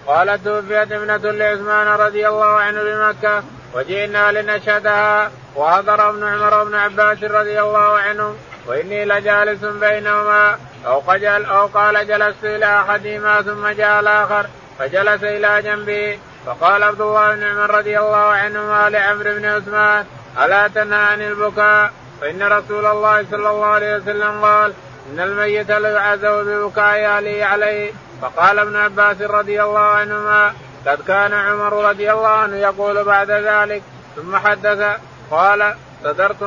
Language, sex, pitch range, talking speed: Arabic, male, 205-210 Hz, 135 wpm